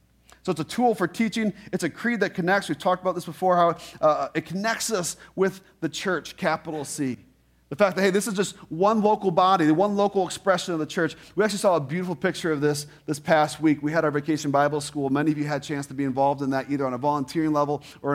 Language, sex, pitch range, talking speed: English, male, 140-170 Hz, 255 wpm